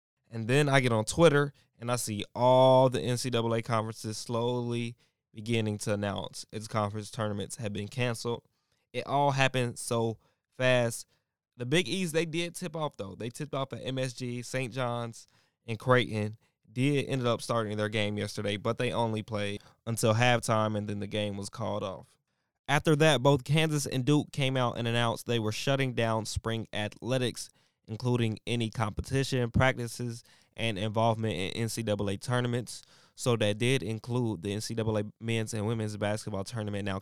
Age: 20-39